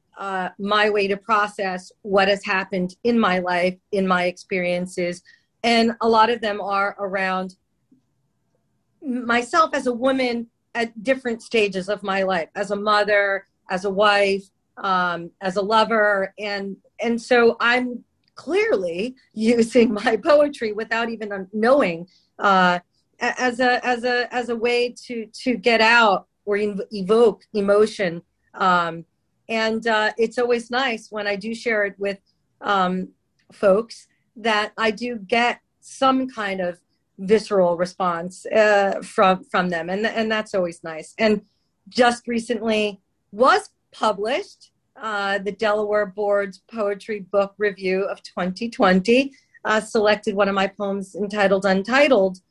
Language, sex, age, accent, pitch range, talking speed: English, female, 40-59, American, 195-230 Hz, 140 wpm